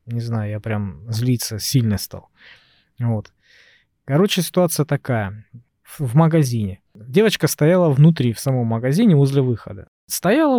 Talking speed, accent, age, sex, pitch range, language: 125 wpm, native, 20-39, male, 120-155 Hz, Russian